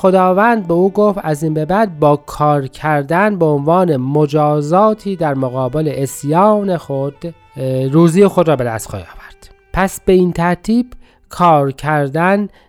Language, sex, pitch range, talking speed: Persian, male, 150-210 Hz, 140 wpm